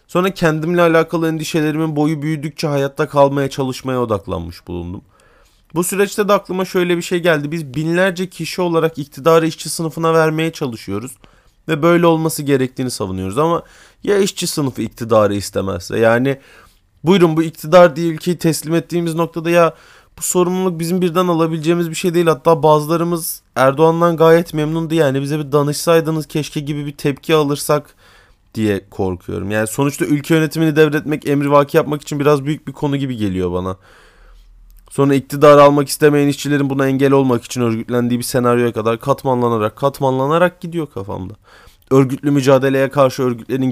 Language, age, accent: Turkish, 30-49, native